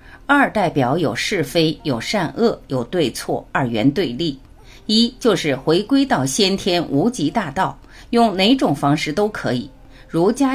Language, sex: Chinese, female